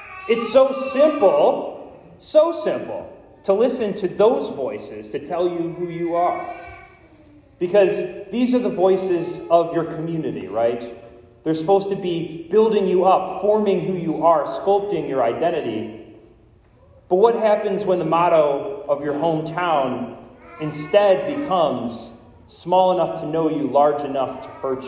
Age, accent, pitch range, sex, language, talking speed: 30-49, American, 145-200 Hz, male, English, 140 wpm